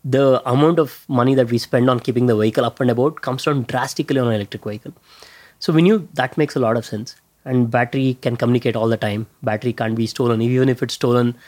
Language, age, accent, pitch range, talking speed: English, 20-39, Indian, 115-140 Hz, 235 wpm